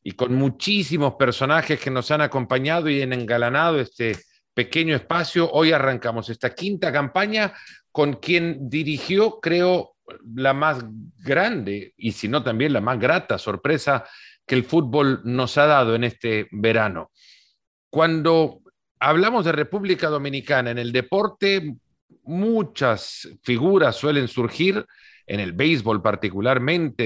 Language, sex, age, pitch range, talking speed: Spanish, male, 50-69, 120-160 Hz, 130 wpm